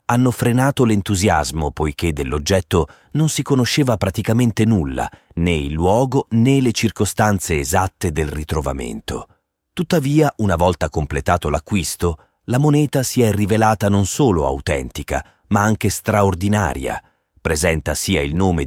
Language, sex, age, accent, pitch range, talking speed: Italian, male, 30-49, native, 75-100 Hz, 125 wpm